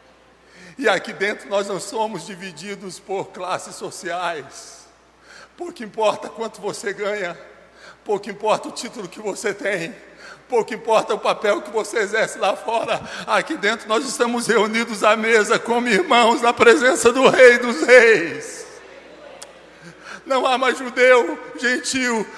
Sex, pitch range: male, 190-255 Hz